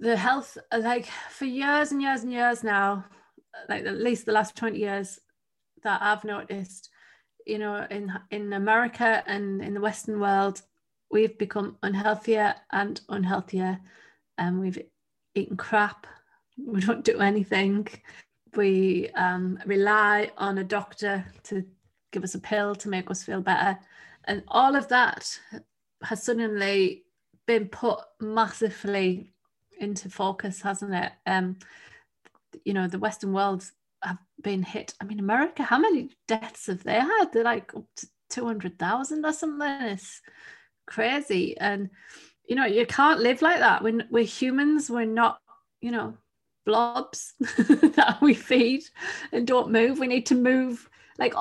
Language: English